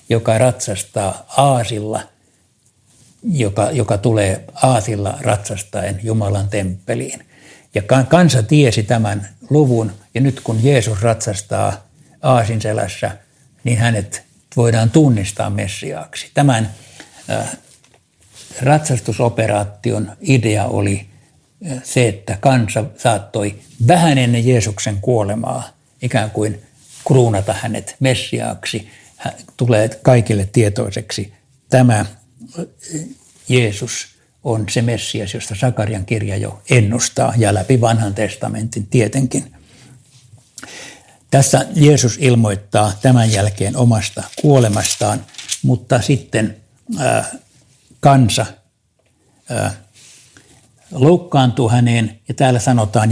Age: 60-79